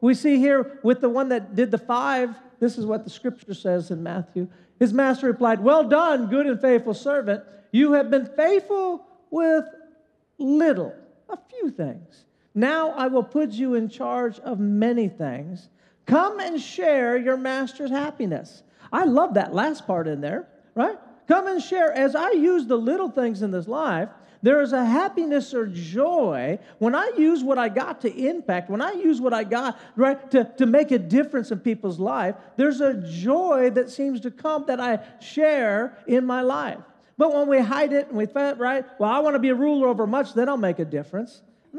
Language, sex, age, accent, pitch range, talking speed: English, male, 40-59, American, 215-285 Hz, 200 wpm